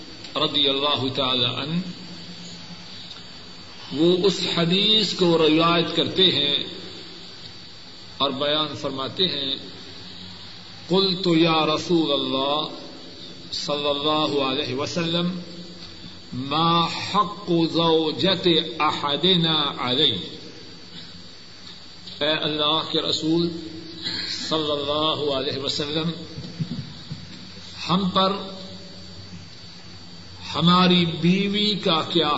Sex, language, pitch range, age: male, Urdu, 130-175 Hz, 50-69